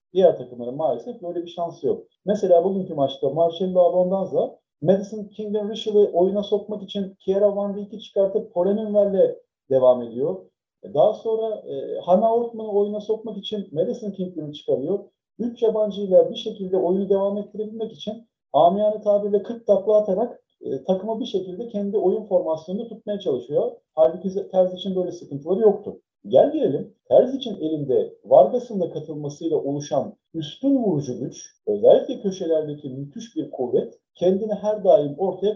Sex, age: male, 40-59